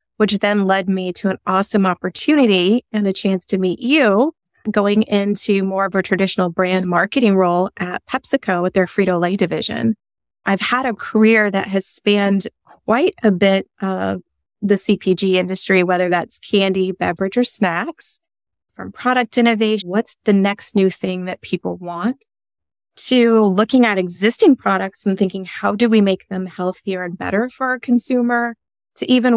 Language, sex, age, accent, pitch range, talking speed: English, female, 20-39, American, 185-220 Hz, 165 wpm